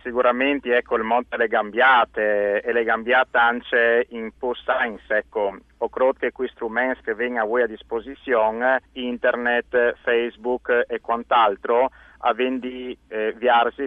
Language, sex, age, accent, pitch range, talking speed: Italian, male, 50-69, native, 115-135 Hz, 135 wpm